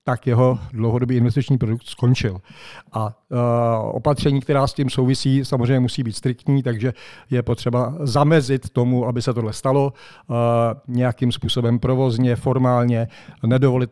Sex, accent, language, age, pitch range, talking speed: male, native, Czech, 50-69, 120-135 Hz, 140 wpm